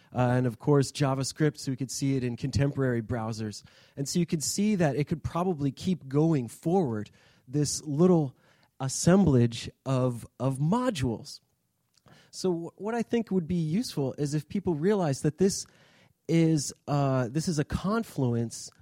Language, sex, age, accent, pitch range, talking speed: English, male, 30-49, American, 125-160 Hz, 165 wpm